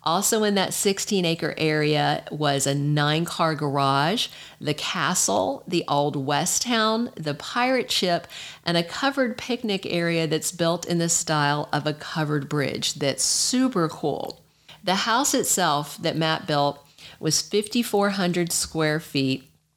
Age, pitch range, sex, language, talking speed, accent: 50-69, 145-180 Hz, female, English, 145 wpm, American